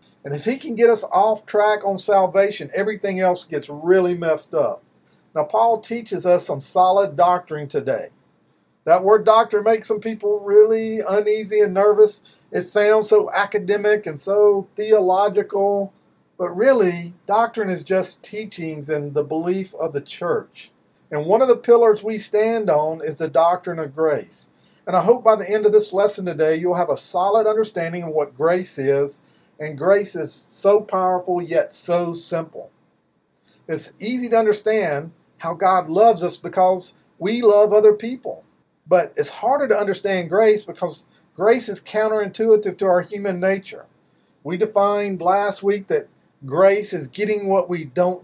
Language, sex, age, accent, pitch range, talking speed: English, male, 50-69, American, 175-215 Hz, 165 wpm